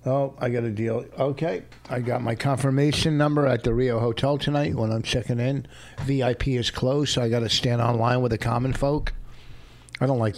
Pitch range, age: 110-135 Hz, 60-79